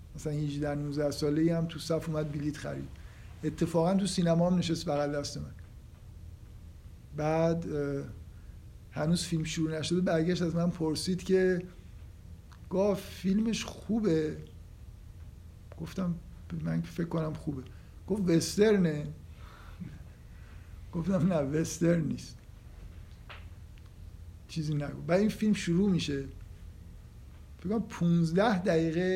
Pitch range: 140-185 Hz